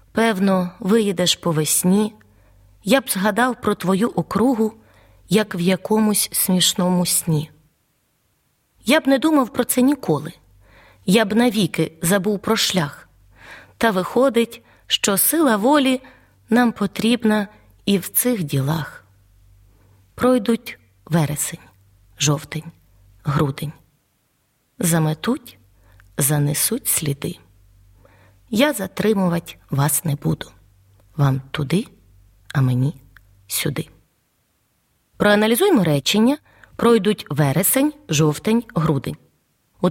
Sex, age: female, 20-39